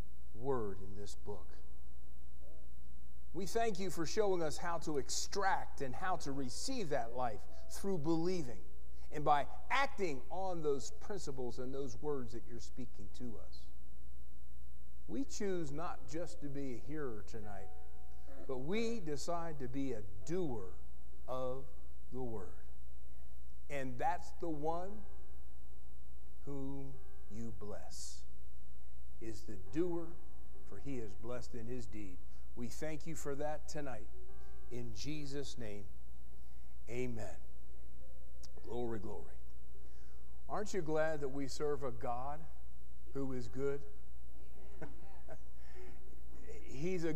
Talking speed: 120 wpm